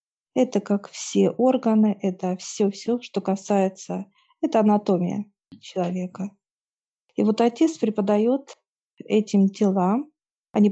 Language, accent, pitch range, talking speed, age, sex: Russian, native, 190-225 Hz, 105 wpm, 40-59, female